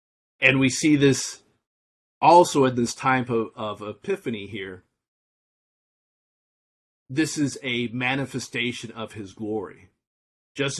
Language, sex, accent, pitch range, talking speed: English, male, American, 110-130 Hz, 105 wpm